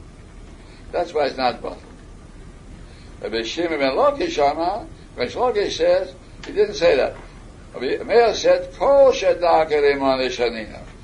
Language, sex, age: English, male, 60-79